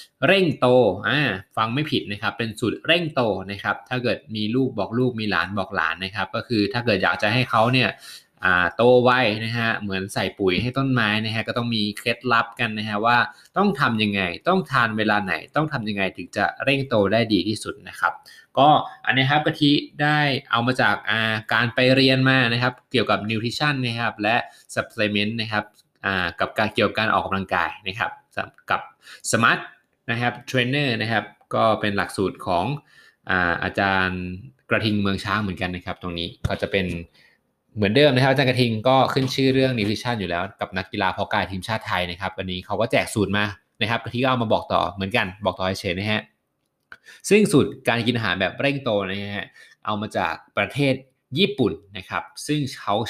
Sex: male